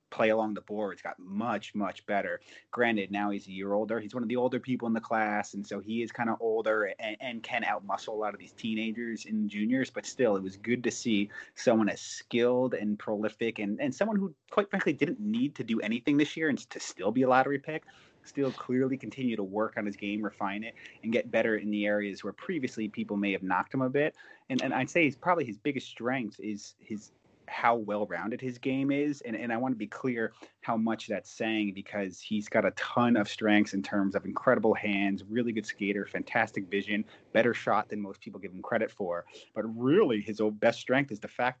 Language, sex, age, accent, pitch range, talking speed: English, male, 30-49, American, 105-125 Hz, 230 wpm